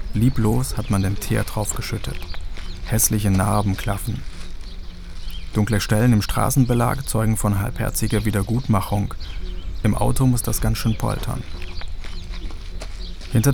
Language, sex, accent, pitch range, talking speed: German, male, German, 85-115 Hz, 110 wpm